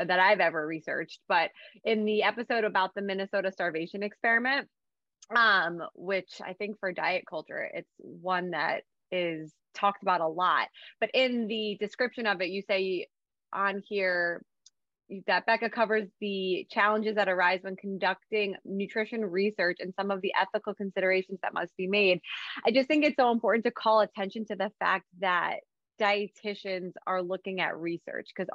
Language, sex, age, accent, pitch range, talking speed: English, female, 20-39, American, 180-210 Hz, 165 wpm